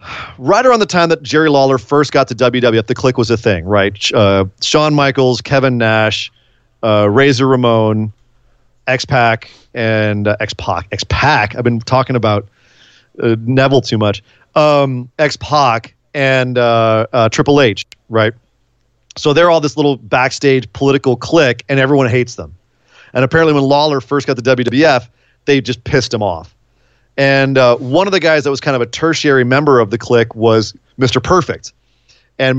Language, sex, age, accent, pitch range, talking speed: English, male, 40-59, American, 115-140 Hz, 170 wpm